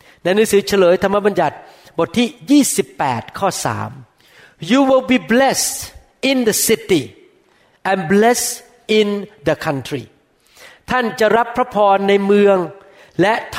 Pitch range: 180-235 Hz